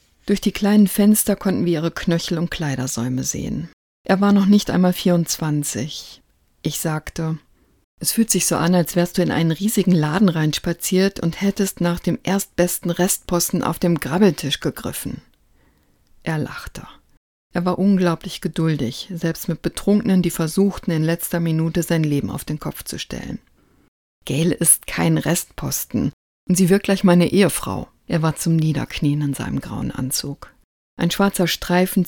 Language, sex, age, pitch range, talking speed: German, female, 50-69, 155-185 Hz, 155 wpm